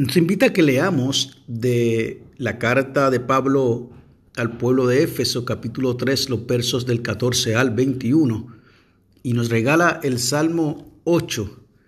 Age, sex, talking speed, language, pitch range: 50-69, male, 140 wpm, Spanish, 115-155 Hz